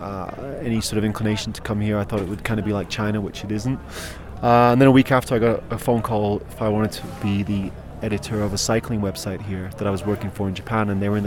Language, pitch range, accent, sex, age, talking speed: English, 105-130 Hz, British, male, 20-39, 290 wpm